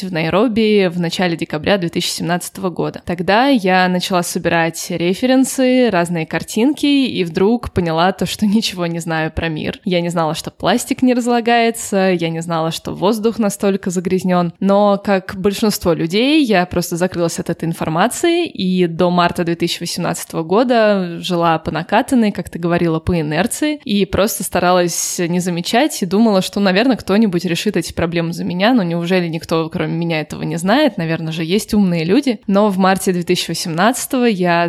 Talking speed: 160 wpm